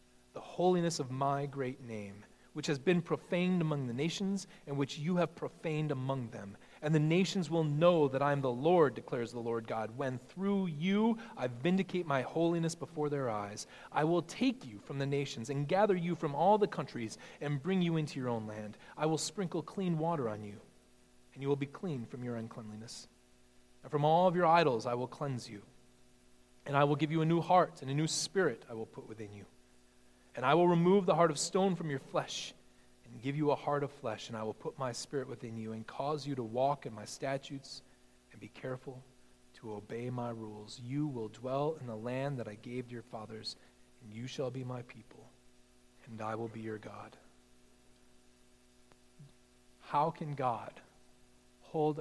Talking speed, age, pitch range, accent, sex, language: 200 wpm, 30-49, 110-155 Hz, American, male, English